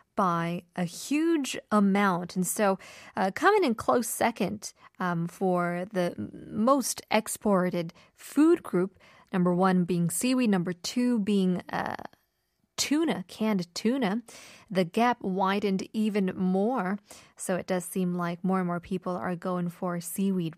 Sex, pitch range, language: female, 185-265 Hz, Korean